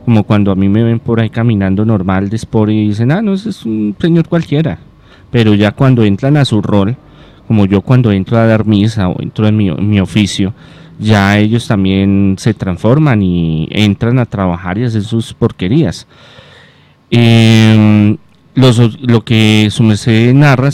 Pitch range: 105-130 Hz